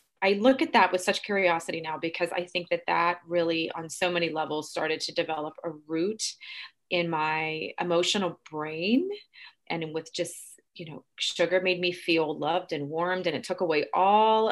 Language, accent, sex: English, American, female